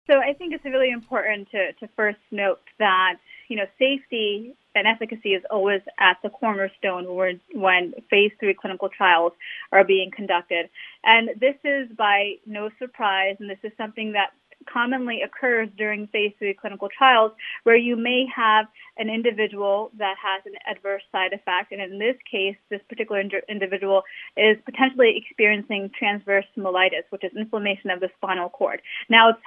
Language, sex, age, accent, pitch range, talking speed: English, female, 30-49, American, 200-250 Hz, 165 wpm